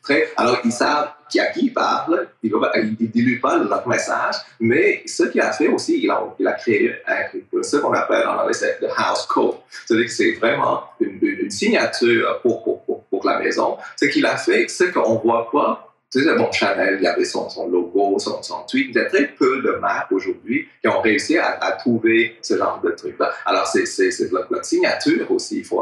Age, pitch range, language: 30-49, 330-395 Hz, French